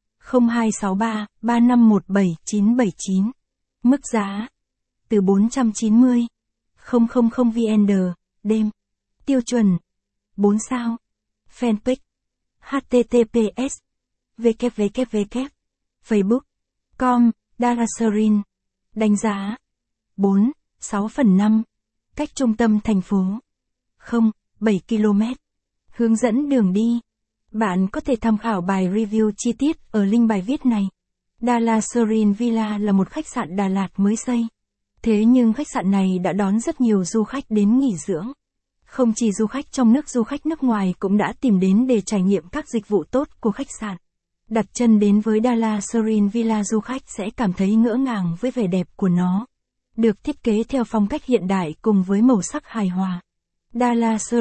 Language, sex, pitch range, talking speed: Vietnamese, female, 205-240 Hz, 145 wpm